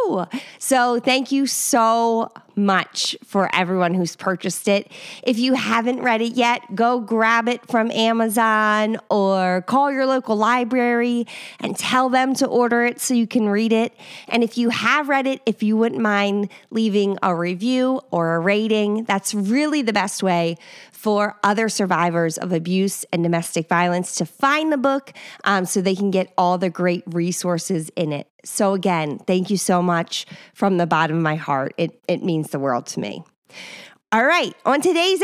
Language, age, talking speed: English, 30-49, 175 wpm